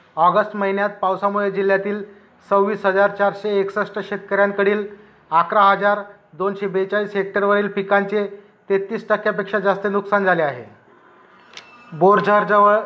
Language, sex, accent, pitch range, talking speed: Marathi, male, native, 195-210 Hz, 105 wpm